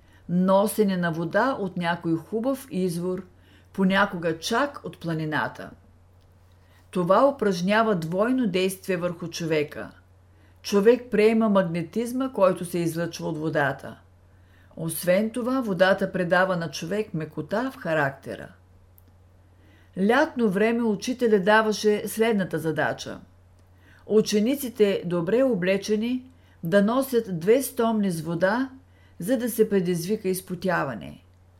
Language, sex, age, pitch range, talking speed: Bulgarian, female, 50-69, 145-215 Hz, 105 wpm